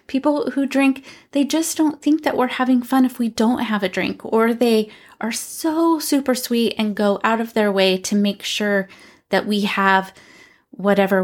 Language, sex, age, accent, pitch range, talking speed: English, female, 20-39, American, 195-245 Hz, 190 wpm